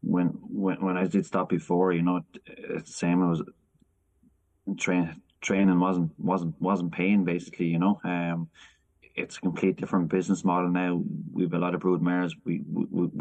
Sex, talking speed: male, 170 wpm